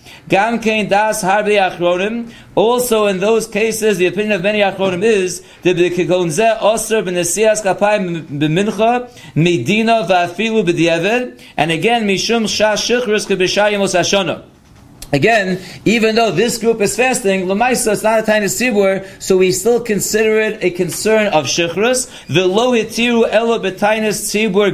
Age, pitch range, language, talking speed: 40-59, 180-215 Hz, English, 140 wpm